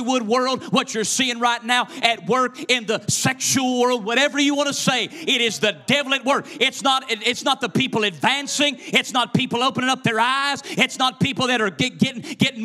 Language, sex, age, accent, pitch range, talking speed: English, male, 50-69, American, 155-255 Hz, 215 wpm